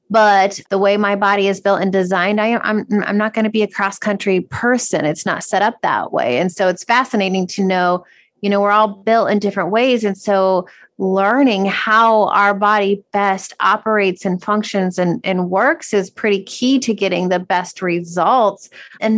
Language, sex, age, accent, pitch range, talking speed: English, female, 30-49, American, 185-215 Hz, 190 wpm